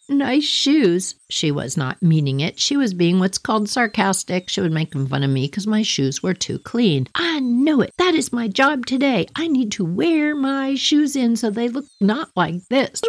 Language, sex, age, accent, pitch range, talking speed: English, female, 60-79, American, 160-255 Hz, 210 wpm